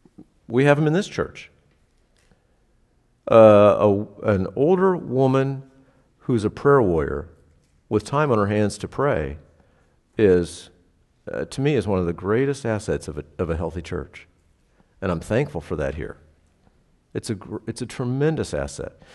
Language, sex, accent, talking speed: English, male, American, 155 wpm